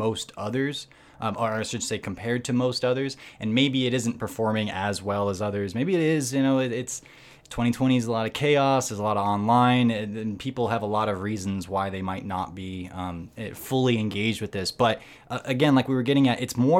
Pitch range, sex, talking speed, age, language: 105-130 Hz, male, 230 wpm, 20-39, English